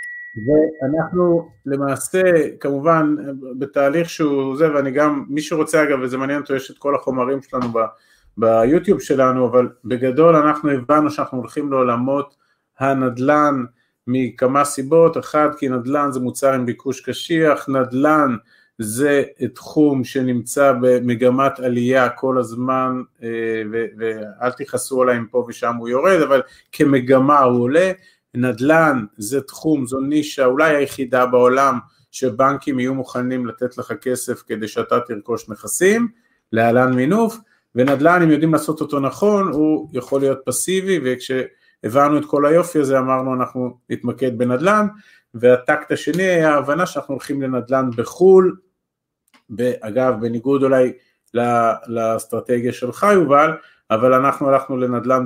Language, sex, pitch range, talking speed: Hebrew, male, 125-150 Hz, 125 wpm